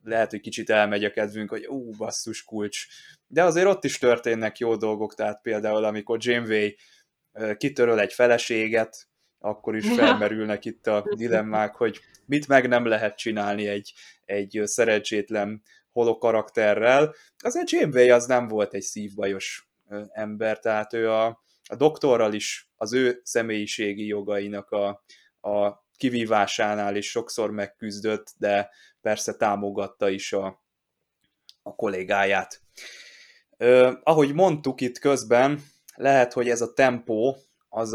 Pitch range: 105-120 Hz